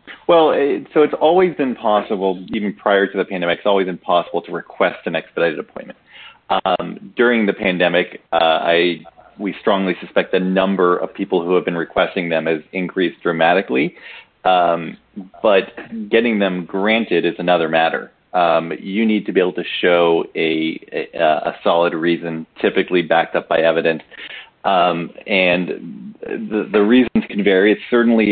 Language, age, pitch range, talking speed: English, 40-59, 85-105 Hz, 160 wpm